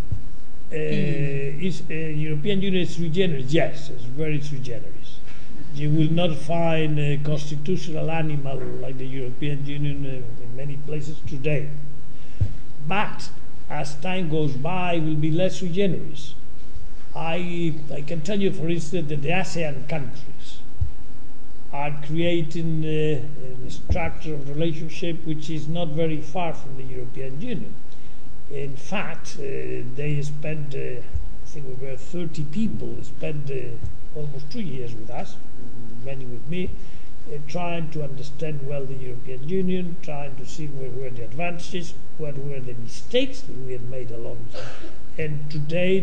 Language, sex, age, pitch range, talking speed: English, male, 60-79, 135-165 Hz, 145 wpm